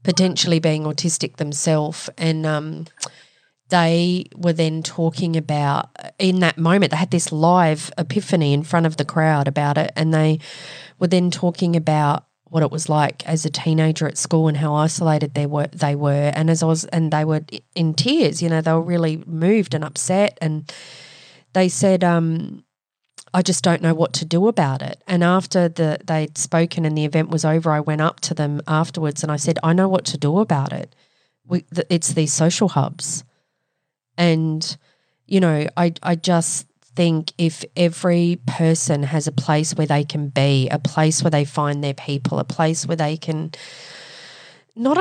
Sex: female